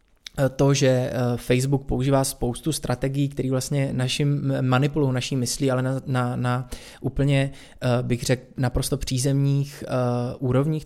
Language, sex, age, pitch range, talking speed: Czech, male, 20-39, 125-145 Hz, 120 wpm